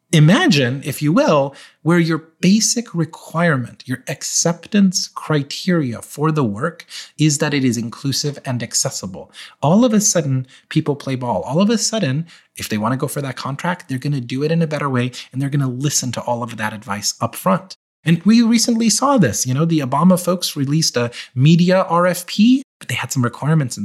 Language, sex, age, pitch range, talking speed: English, male, 30-49, 130-175 Hz, 200 wpm